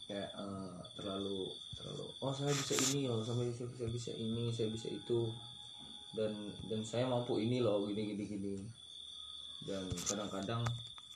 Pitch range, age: 100-120 Hz, 20-39